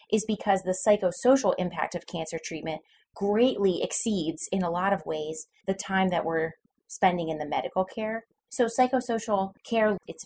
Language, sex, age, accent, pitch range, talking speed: English, female, 20-39, American, 170-205 Hz, 165 wpm